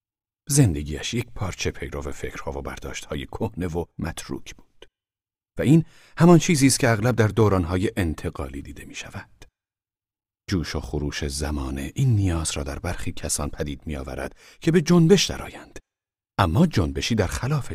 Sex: male